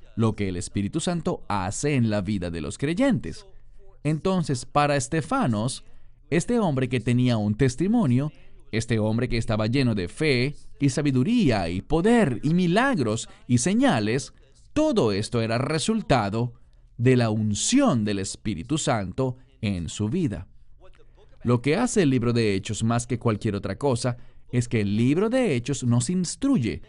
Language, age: English, 40-59